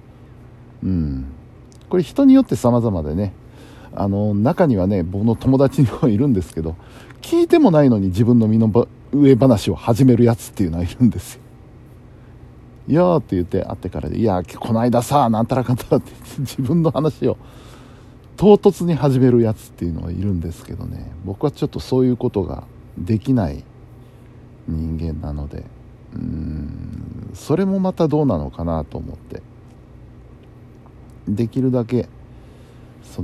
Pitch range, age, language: 95-125 Hz, 50-69, Japanese